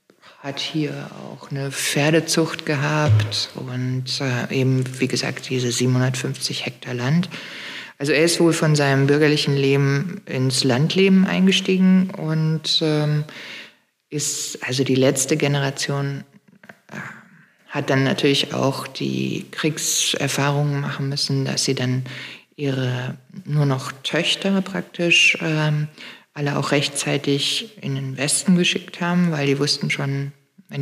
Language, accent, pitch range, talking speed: German, German, 130-155 Hz, 125 wpm